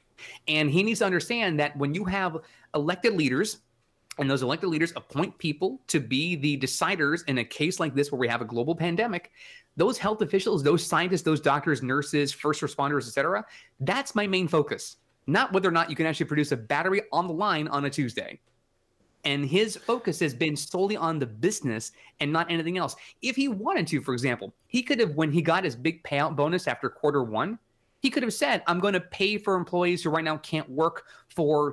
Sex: male